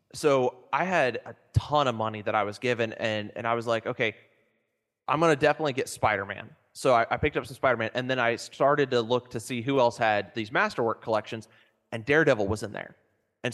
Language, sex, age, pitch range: English, male, 20-39, 110-135 Hz